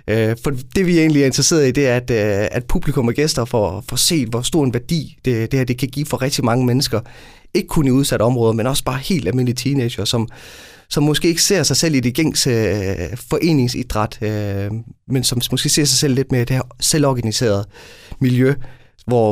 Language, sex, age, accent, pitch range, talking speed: Danish, male, 30-49, native, 115-140 Hz, 210 wpm